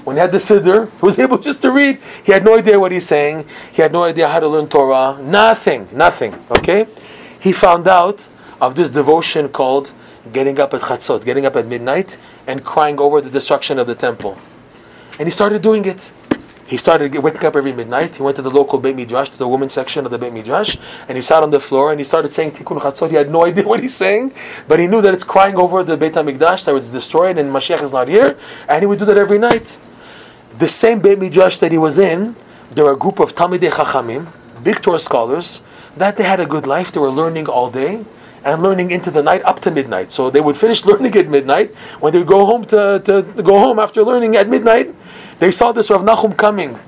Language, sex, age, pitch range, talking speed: English, male, 30-49, 145-200 Hz, 240 wpm